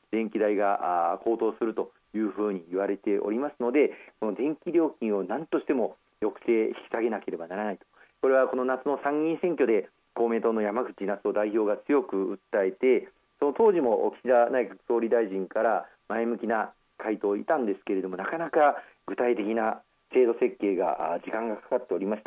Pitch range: 105-165 Hz